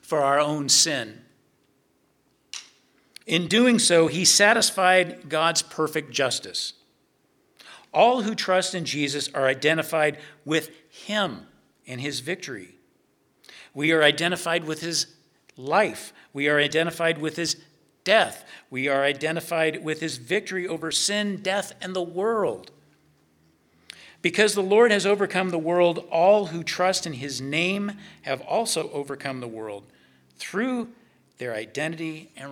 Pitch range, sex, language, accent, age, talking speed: 140-185 Hz, male, English, American, 50-69, 130 wpm